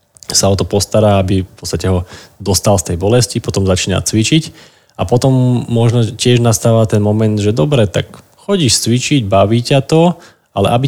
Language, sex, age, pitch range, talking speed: Slovak, male, 20-39, 95-120 Hz, 175 wpm